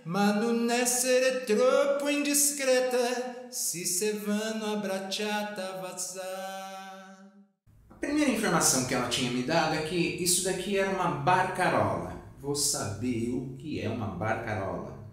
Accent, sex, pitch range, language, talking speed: Brazilian, male, 125-190 Hz, Portuguese, 90 wpm